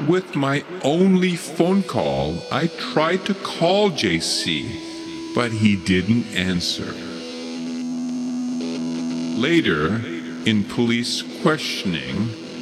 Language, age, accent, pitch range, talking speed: English, 50-69, American, 90-150 Hz, 85 wpm